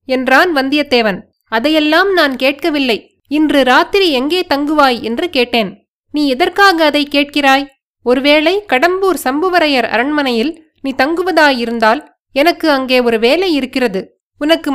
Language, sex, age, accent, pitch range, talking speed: Tamil, female, 20-39, native, 255-330 Hz, 110 wpm